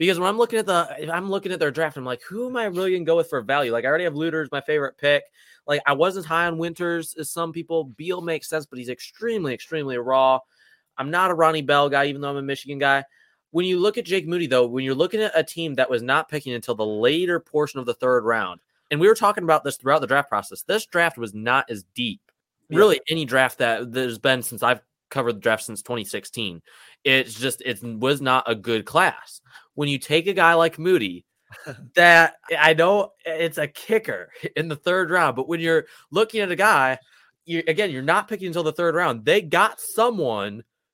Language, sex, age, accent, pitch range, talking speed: English, male, 20-39, American, 135-200 Hz, 230 wpm